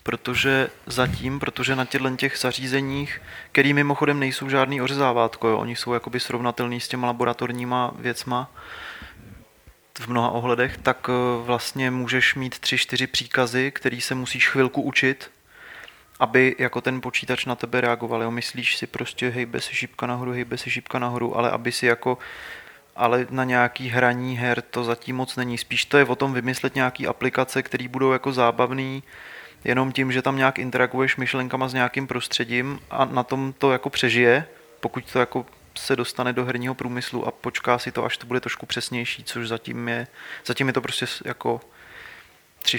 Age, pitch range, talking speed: 20-39, 120-130 Hz, 170 wpm